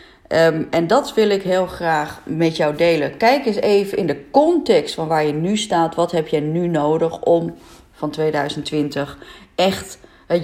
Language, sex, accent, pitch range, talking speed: Dutch, female, Dutch, 155-200 Hz, 170 wpm